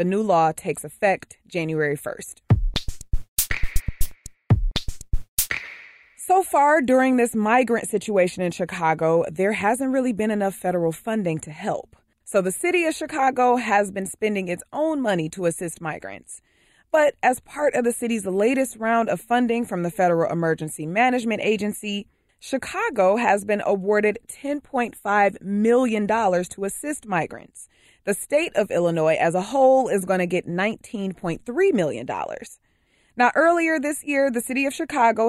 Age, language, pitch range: 20-39, English, 170-240 Hz